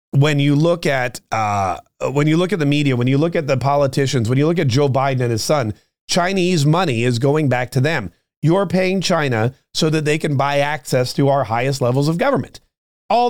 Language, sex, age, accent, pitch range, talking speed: English, male, 40-59, American, 135-175 Hz, 220 wpm